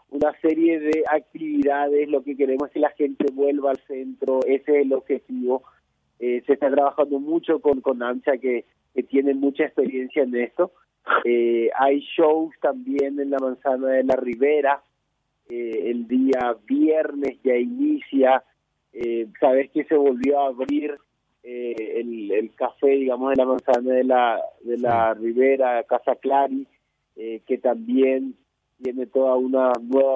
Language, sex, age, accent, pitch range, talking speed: Spanish, male, 30-49, Argentinian, 125-145 Hz, 155 wpm